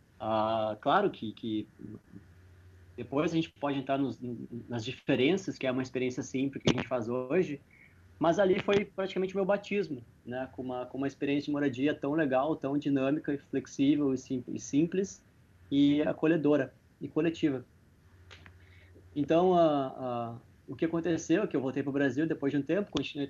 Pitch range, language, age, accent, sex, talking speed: 120-145 Hz, Portuguese, 20-39, Brazilian, male, 170 wpm